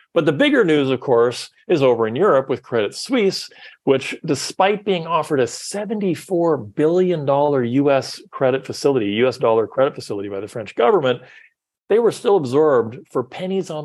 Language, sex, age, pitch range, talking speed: English, male, 40-59, 130-190 Hz, 165 wpm